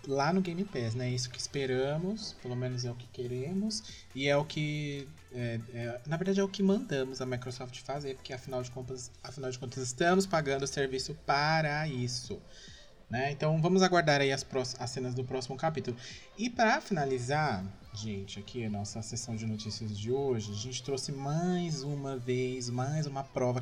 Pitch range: 115-140 Hz